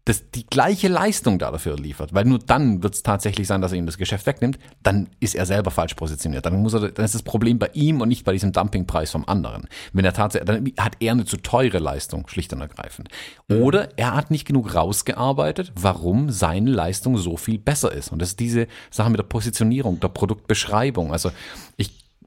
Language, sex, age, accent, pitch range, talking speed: German, male, 40-59, German, 95-125 Hz, 215 wpm